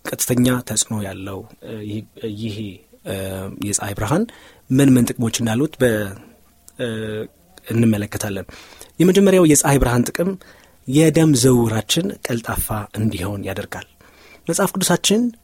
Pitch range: 105-140 Hz